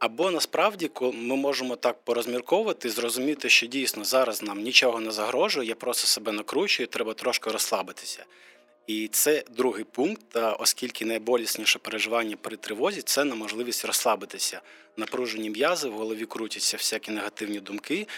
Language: Ukrainian